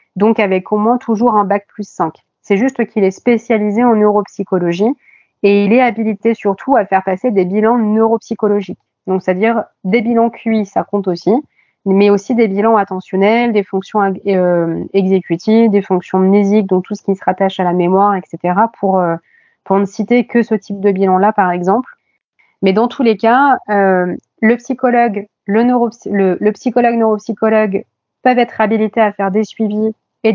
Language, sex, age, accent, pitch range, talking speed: French, female, 30-49, French, 195-235 Hz, 180 wpm